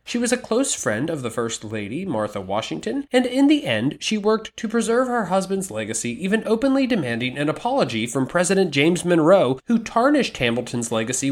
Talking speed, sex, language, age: 185 wpm, male, English, 20-39